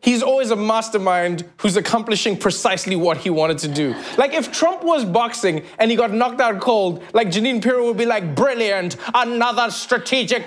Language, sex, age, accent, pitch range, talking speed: English, male, 30-49, South African, 145-235 Hz, 185 wpm